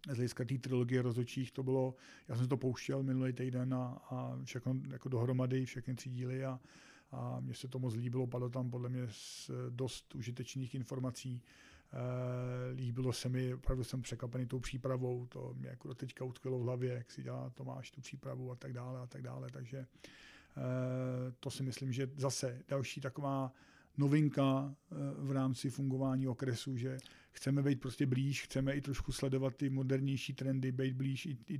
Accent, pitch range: native, 125-135 Hz